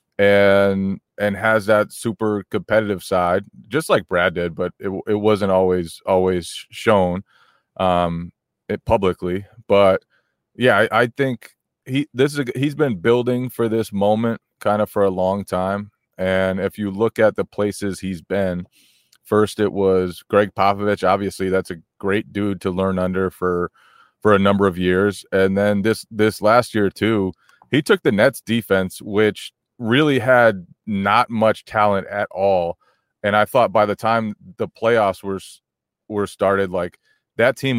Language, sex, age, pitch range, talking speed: English, male, 30-49, 95-110 Hz, 165 wpm